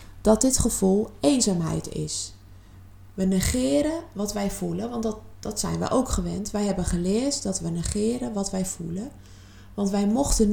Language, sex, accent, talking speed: Dutch, female, Dutch, 165 wpm